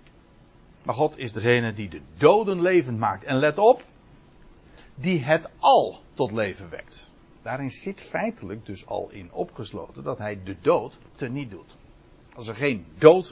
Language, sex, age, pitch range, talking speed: Dutch, male, 60-79, 115-185 Hz, 160 wpm